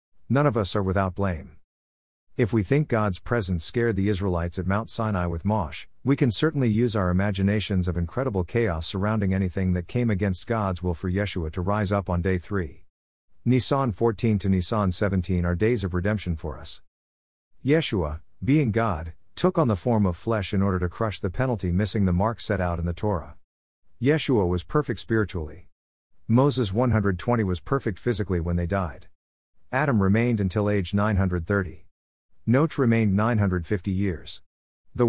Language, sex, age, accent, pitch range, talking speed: English, male, 50-69, American, 90-115 Hz, 170 wpm